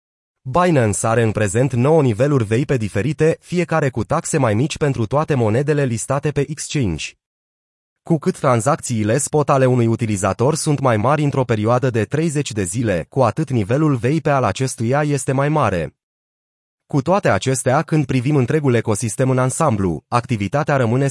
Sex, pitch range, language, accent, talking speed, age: male, 115-145 Hz, Romanian, native, 155 wpm, 30-49